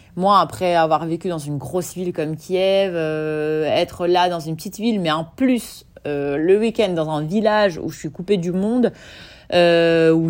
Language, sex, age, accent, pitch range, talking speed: English, female, 30-49, French, 150-190 Hz, 200 wpm